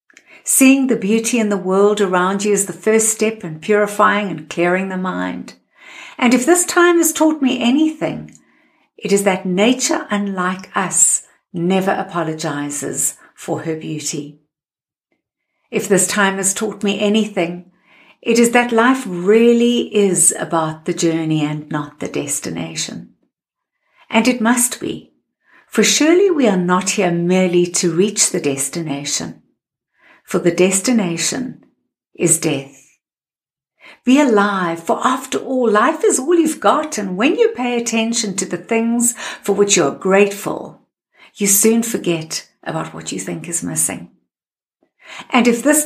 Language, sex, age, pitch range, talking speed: English, female, 60-79, 175-240 Hz, 145 wpm